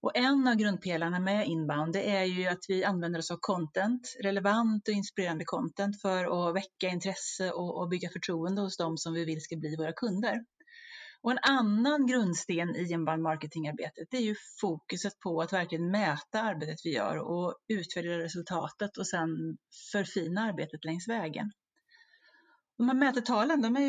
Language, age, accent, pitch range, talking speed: Swedish, 30-49, native, 170-240 Hz, 170 wpm